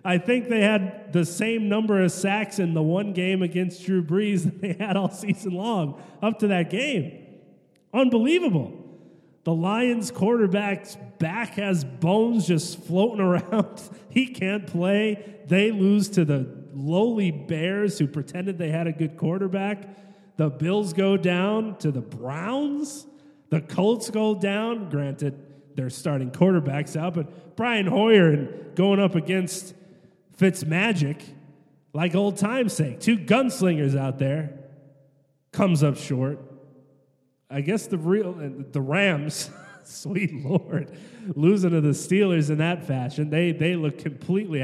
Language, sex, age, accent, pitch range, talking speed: English, male, 30-49, American, 155-205 Hz, 145 wpm